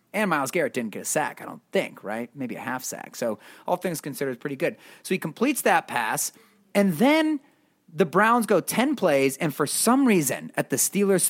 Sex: male